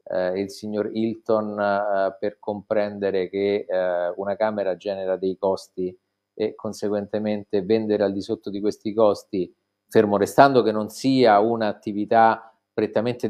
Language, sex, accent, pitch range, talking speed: Italian, male, native, 100-120 Hz, 120 wpm